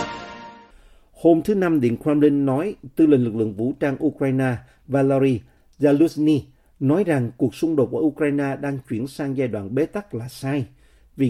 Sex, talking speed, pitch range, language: male, 170 wpm, 120-150 Hz, Vietnamese